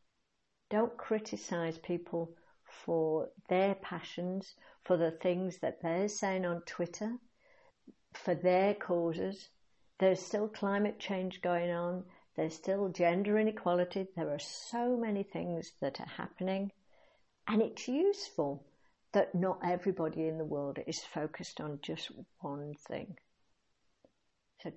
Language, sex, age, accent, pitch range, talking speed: English, female, 60-79, British, 160-195 Hz, 125 wpm